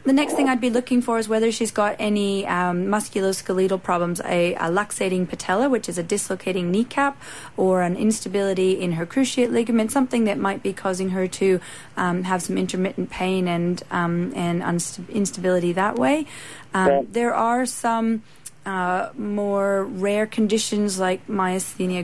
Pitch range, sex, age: 180-220 Hz, female, 30-49